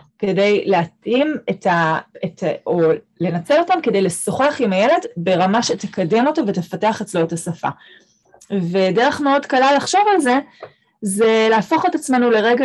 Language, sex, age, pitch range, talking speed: Hebrew, female, 20-39, 195-250 Hz, 145 wpm